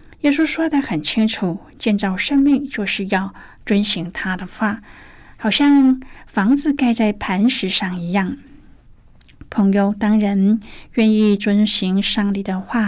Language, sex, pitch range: Chinese, female, 190-225 Hz